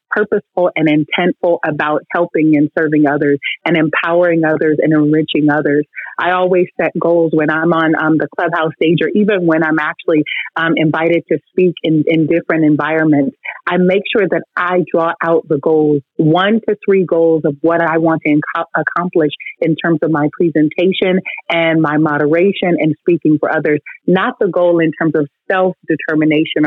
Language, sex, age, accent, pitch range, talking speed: English, female, 30-49, American, 155-175 Hz, 175 wpm